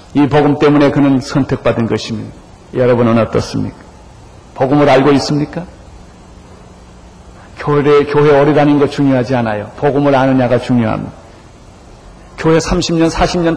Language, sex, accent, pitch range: Korean, male, native, 115-155 Hz